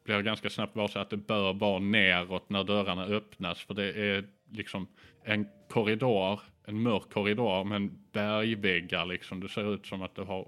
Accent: Norwegian